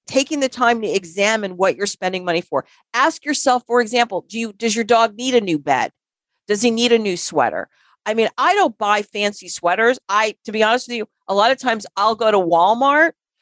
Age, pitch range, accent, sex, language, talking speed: 50-69, 180-235 Hz, American, female, English, 225 wpm